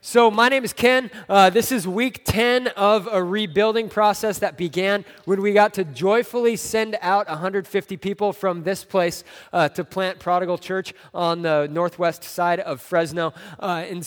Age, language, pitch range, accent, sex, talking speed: 20-39, English, 180-220 Hz, American, male, 175 wpm